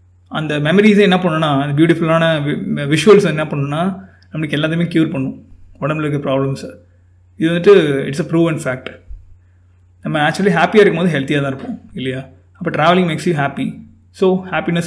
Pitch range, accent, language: 130-175 Hz, native, Tamil